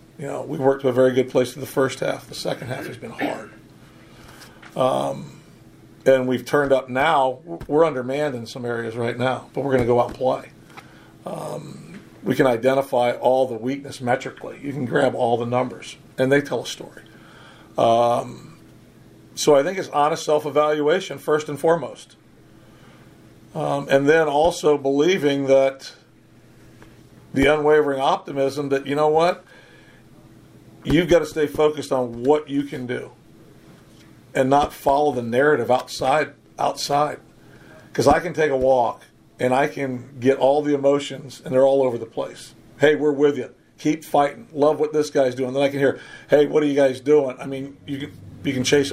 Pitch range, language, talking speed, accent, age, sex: 130-145 Hz, English, 175 wpm, American, 50-69, male